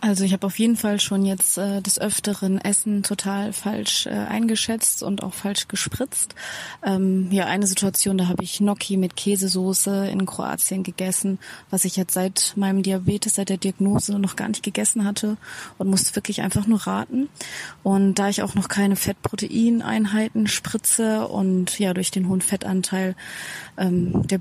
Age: 20-39